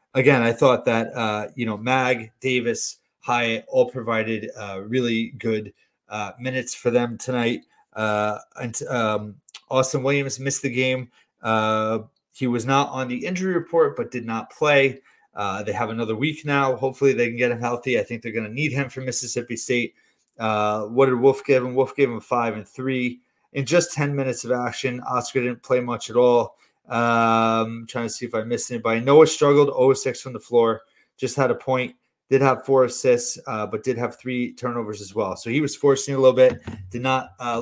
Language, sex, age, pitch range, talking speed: English, male, 30-49, 115-135 Hz, 200 wpm